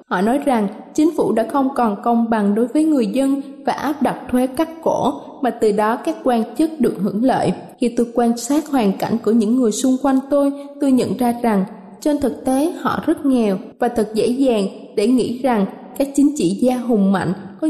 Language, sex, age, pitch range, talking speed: Vietnamese, female, 20-39, 220-275 Hz, 220 wpm